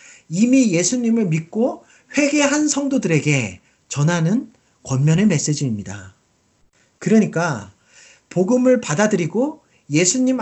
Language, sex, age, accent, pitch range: Korean, male, 40-59, native, 155-245 Hz